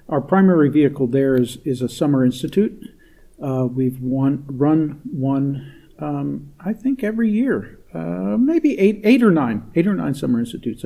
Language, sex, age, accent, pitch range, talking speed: English, male, 50-69, American, 130-155 Hz, 165 wpm